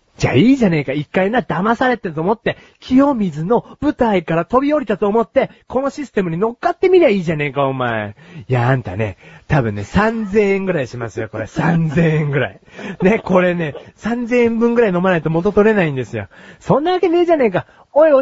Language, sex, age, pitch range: Japanese, male, 40-59, 155-245 Hz